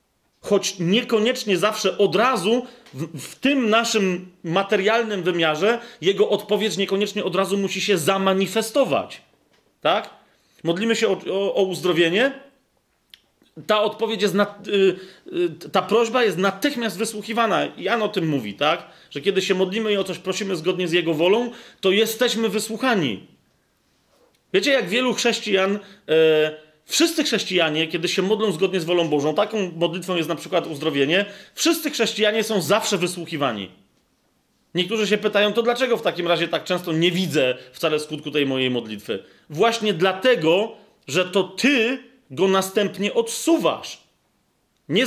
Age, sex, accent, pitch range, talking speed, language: 40-59, male, native, 180-230 Hz, 145 wpm, Polish